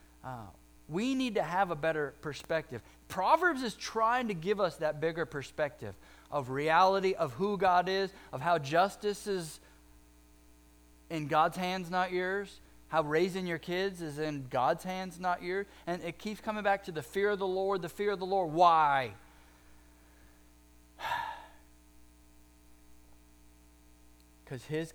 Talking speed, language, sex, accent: 145 wpm, English, male, American